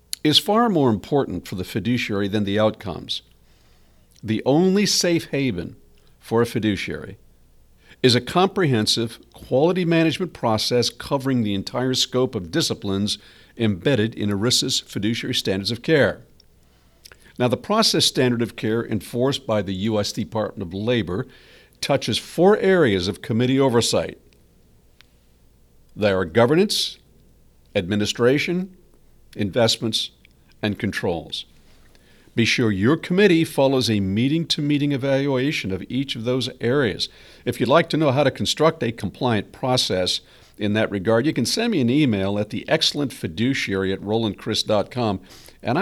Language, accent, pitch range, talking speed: English, American, 100-135 Hz, 135 wpm